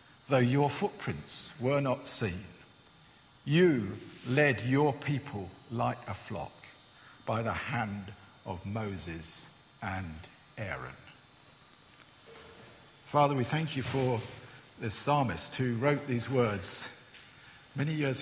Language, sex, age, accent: English, male, 50-69, British